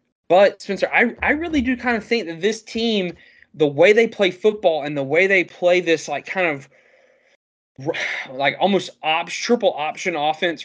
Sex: male